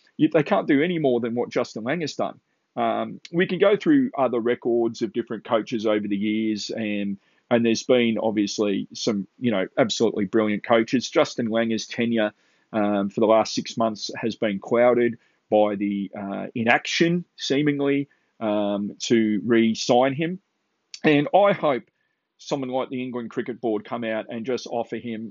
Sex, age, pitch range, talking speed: male, 30-49, 115-155 Hz, 165 wpm